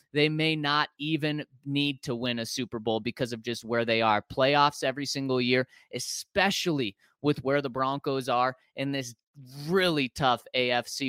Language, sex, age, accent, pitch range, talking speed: English, male, 20-39, American, 125-165 Hz, 170 wpm